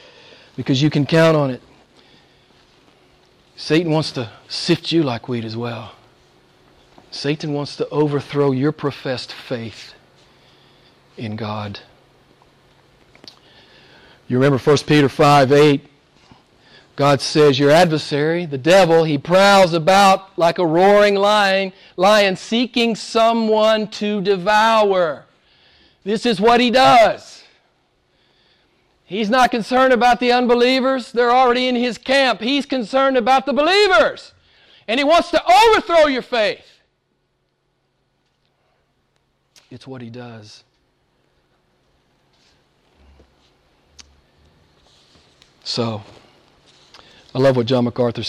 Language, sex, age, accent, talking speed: English, male, 50-69, American, 105 wpm